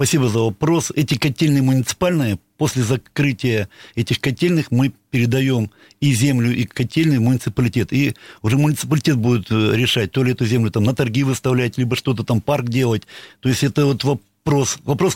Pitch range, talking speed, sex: 120-150 Hz, 160 wpm, male